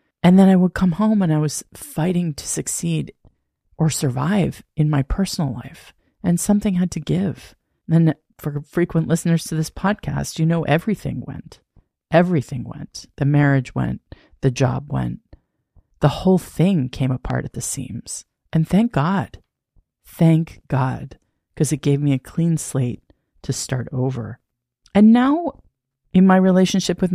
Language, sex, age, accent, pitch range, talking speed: English, female, 40-59, American, 135-185 Hz, 155 wpm